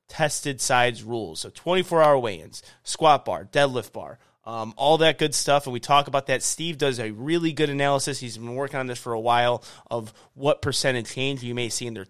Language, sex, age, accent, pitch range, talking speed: English, male, 30-49, American, 120-155 Hz, 220 wpm